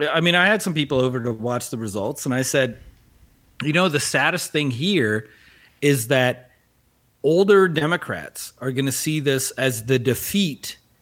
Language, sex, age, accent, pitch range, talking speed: English, male, 40-59, American, 120-155 Hz, 175 wpm